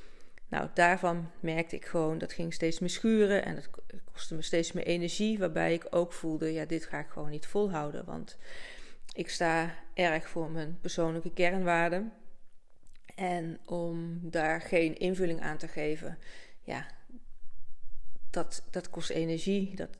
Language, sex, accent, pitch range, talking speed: Dutch, female, Dutch, 160-185 Hz, 150 wpm